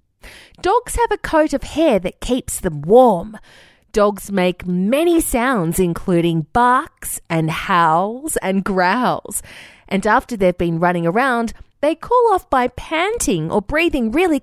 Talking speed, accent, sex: 140 wpm, Australian, female